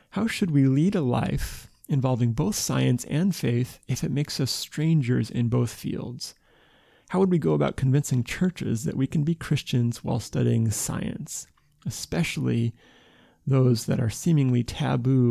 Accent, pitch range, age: American, 115-145 Hz, 30-49